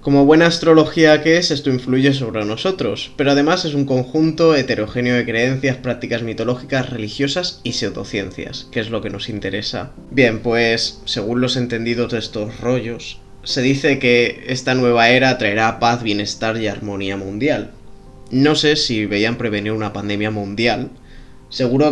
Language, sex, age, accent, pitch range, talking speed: Spanish, male, 20-39, Spanish, 105-130 Hz, 155 wpm